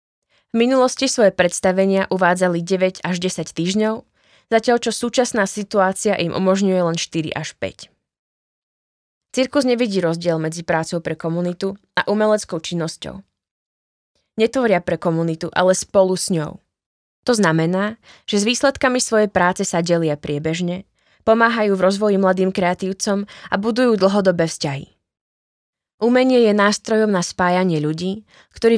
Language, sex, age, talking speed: Slovak, female, 20-39, 125 wpm